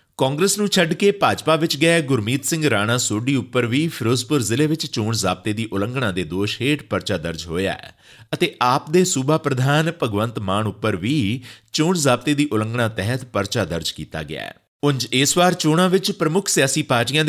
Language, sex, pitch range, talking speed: Punjabi, male, 105-155 Hz, 185 wpm